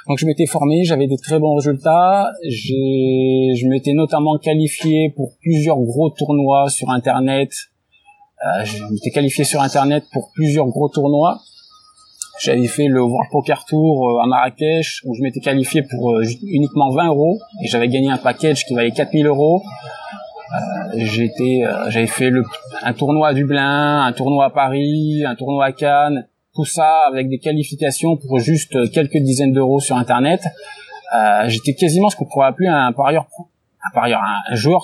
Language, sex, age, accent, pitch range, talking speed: French, male, 20-39, French, 130-160 Hz, 165 wpm